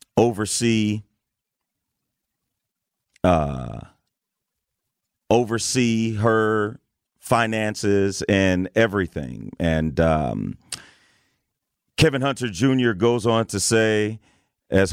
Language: English